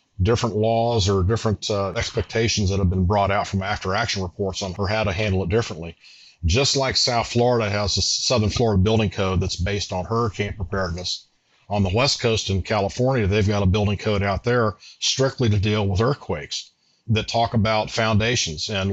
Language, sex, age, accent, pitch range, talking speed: English, male, 40-59, American, 95-110 Hz, 190 wpm